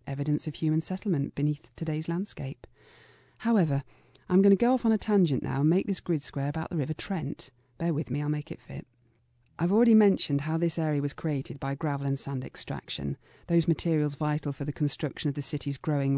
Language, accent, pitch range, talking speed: English, British, 140-180 Hz, 210 wpm